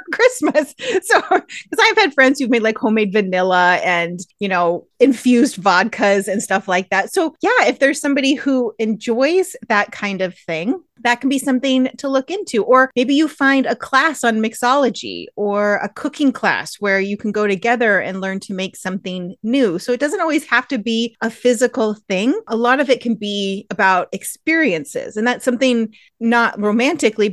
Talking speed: 185 wpm